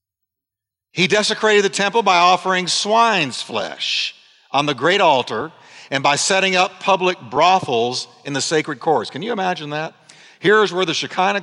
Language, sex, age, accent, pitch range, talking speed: English, male, 50-69, American, 145-215 Hz, 160 wpm